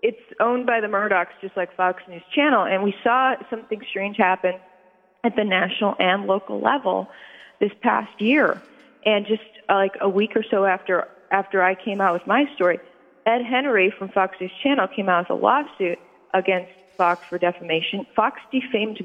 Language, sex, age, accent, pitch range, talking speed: English, female, 30-49, American, 175-210 Hz, 180 wpm